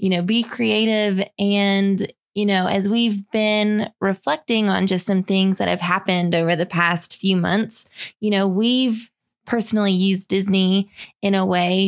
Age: 20-39